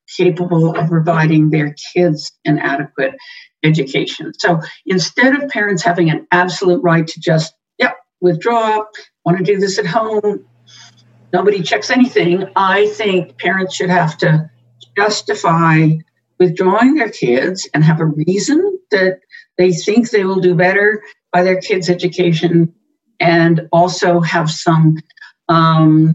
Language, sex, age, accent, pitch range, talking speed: English, female, 60-79, American, 165-200 Hz, 135 wpm